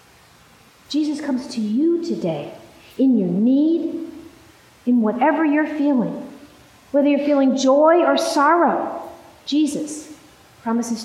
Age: 40-59